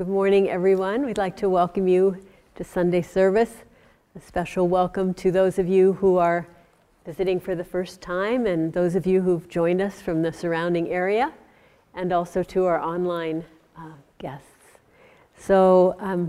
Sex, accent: female, American